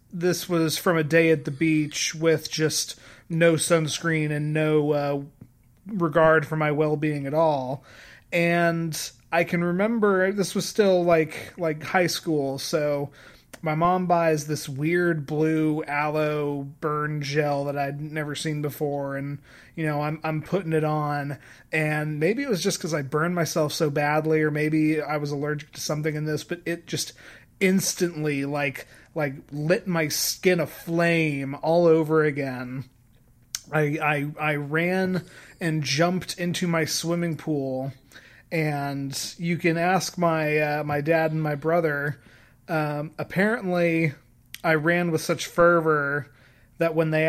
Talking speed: 150 wpm